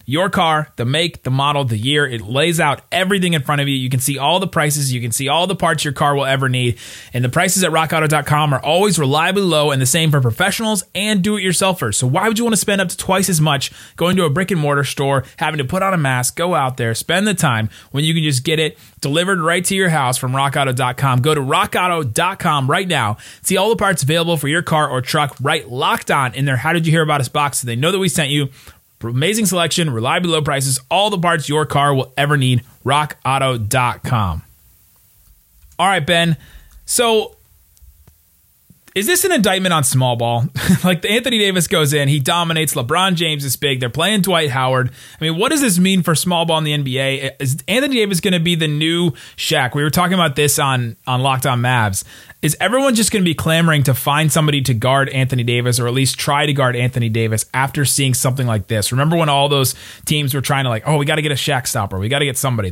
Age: 30-49